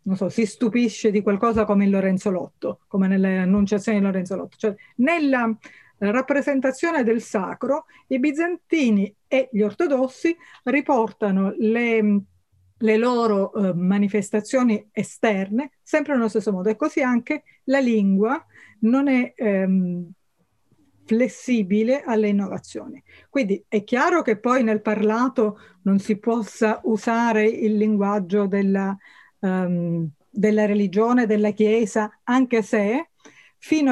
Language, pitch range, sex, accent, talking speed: Italian, 205-250 Hz, female, native, 120 wpm